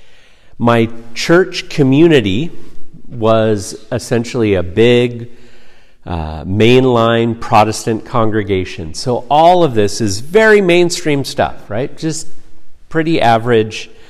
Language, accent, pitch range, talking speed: English, American, 95-130 Hz, 100 wpm